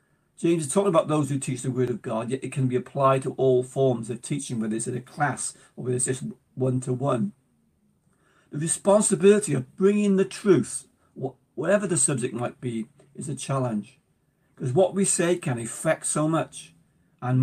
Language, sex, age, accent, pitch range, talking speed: English, male, 50-69, British, 130-175 Hz, 185 wpm